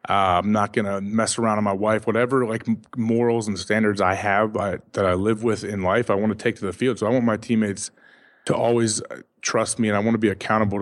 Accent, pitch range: American, 100-115 Hz